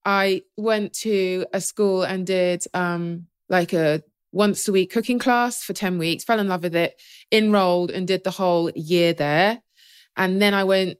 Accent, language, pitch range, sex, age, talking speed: British, English, 180-215 Hz, female, 20-39, 185 wpm